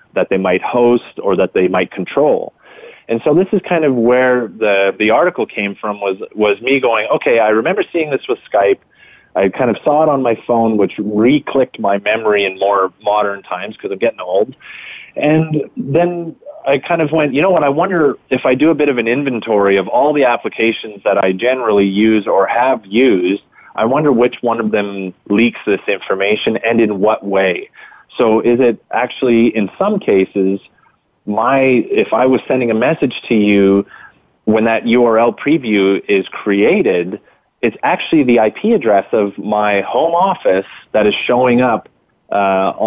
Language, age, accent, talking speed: English, 30-49, American, 185 wpm